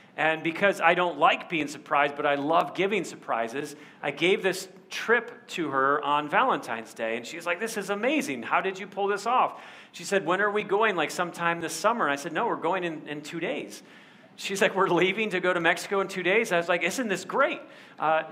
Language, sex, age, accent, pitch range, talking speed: English, male, 40-59, American, 150-190 Hz, 230 wpm